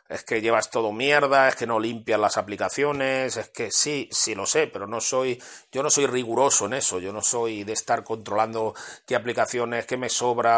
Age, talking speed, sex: 30-49, 210 wpm, male